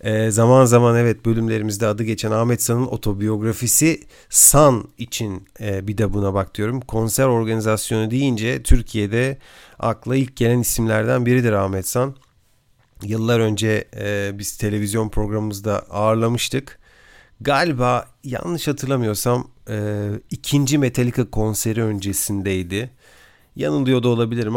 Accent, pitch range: native, 105-125 Hz